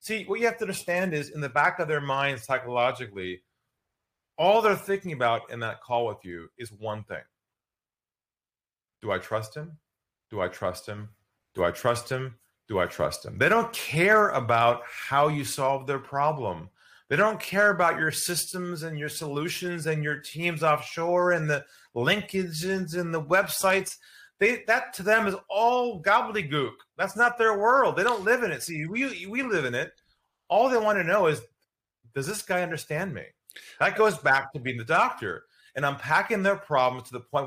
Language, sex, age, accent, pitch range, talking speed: English, male, 30-49, American, 120-190 Hz, 190 wpm